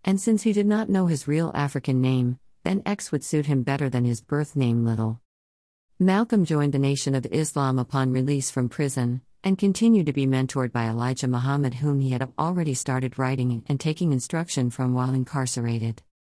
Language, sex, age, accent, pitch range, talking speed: English, female, 50-69, American, 130-155 Hz, 190 wpm